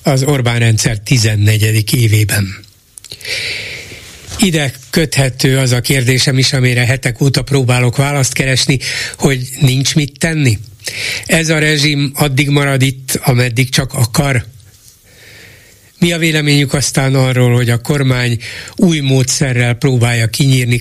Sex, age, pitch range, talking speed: male, 60-79, 120-145 Hz, 120 wpm